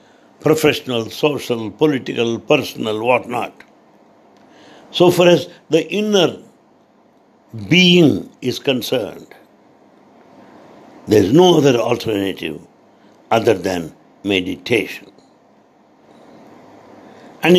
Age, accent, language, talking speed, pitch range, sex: 60-79, Indian, English, 75 wpm, 110-170 Hz, male